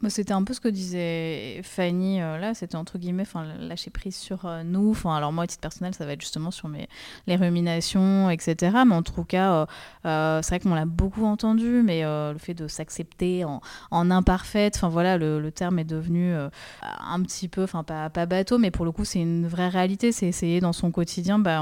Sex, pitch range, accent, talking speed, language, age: female, 165-195 Hz, French, 225 wpm, French, 20-39